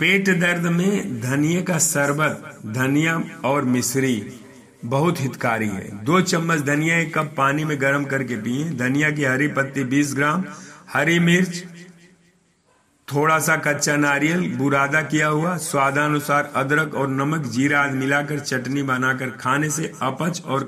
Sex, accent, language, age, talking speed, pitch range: male, native, Hindi, 50-69, 140 wpm, 135-170 Hz